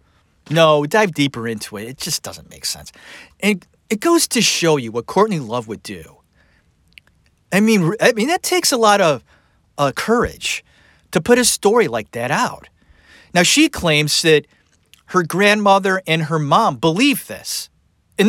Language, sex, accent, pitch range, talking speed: English, male, American, 150-245 Hz, 165 wpm